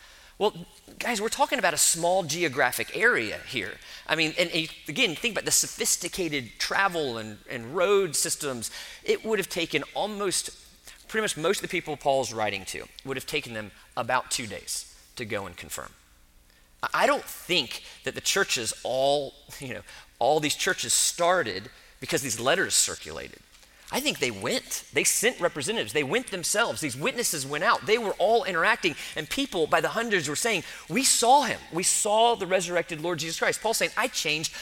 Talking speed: 180 wpm